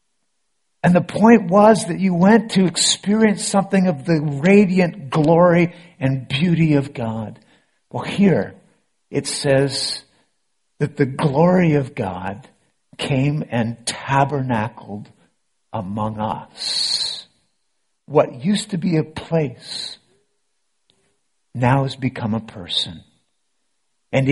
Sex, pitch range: male, 120-155 Hz